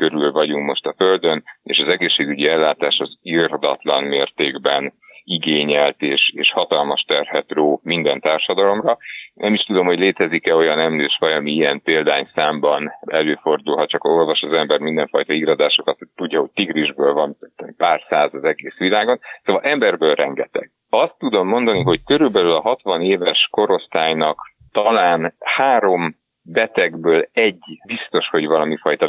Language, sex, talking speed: Hungarian, male, 140 wpm